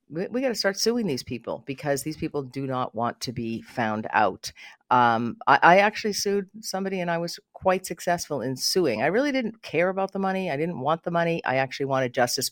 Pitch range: 120-175 Hz